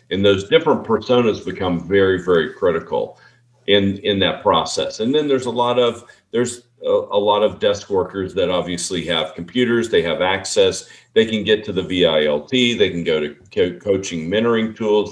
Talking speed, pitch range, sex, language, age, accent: 185 wpm, 95-120 Hz, male, English, 40-59, American